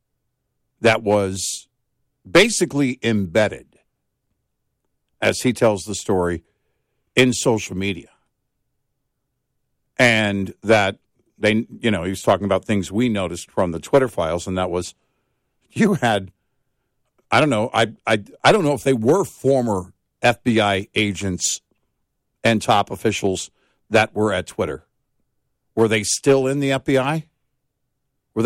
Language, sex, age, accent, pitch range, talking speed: English, male, 50-69, American, 100-135 Hz, 130 wpm